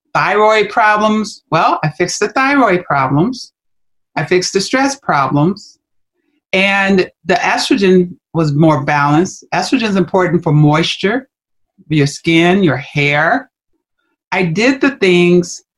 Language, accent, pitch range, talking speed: English, American, 155-210 Hz, 120 wpm